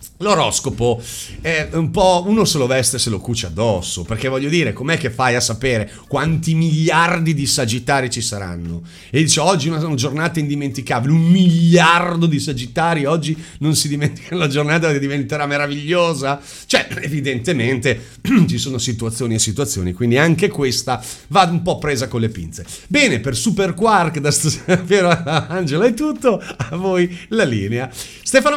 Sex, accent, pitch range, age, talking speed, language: male, native, 130-190 Hz, 40-59, 160 wpm, Italian